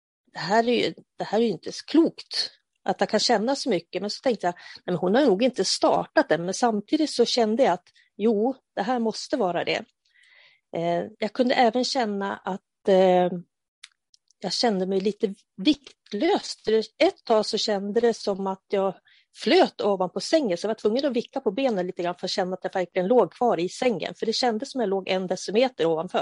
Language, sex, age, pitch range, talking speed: Swedish, female, 30-49, 190-255 Hz, 215 wpm